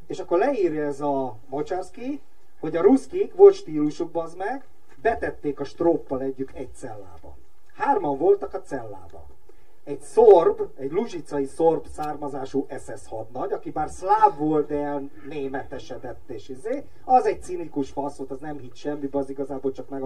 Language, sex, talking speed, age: Hungarian, male, 155 wpm, 30-49